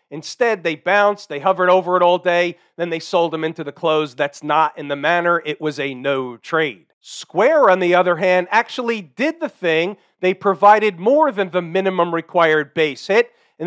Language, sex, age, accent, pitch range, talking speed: English, male, 40-59, American, 160-205 Hz, 200 wpm